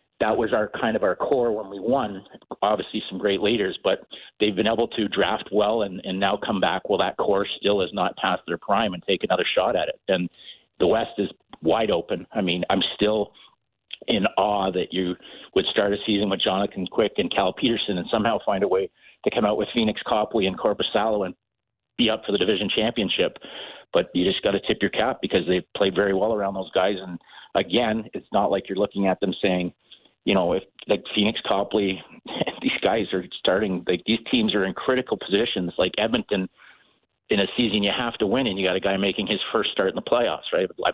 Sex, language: male, English